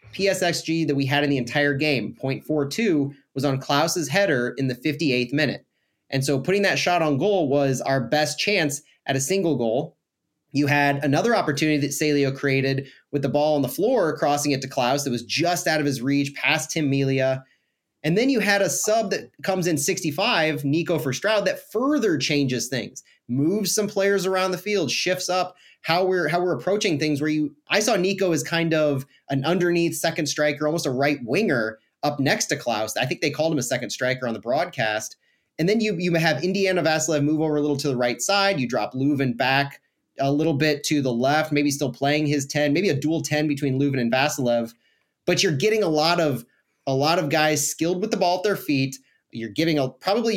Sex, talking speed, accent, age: male, 215 wpm, American, 30-49